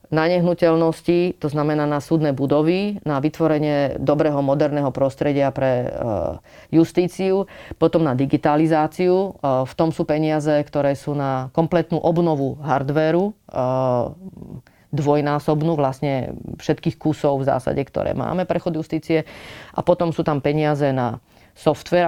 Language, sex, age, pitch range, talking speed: Slovak, female, 30-49, 140-165 Hz, 120 wpm